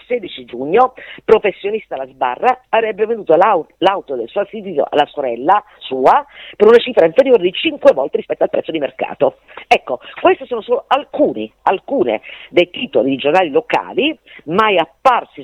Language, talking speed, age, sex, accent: Italian, 150 wpm, 40-59, female, native